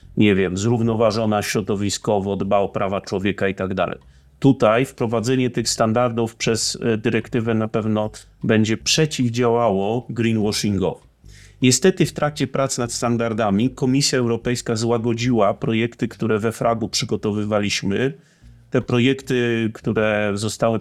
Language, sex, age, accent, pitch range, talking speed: Polish, male, 30-49, native, 105-125 Hz, 115 wpm